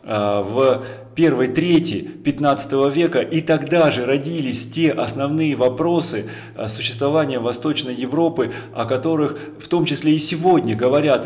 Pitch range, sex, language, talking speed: 125-155 Hz, male, Russian, 125 wpm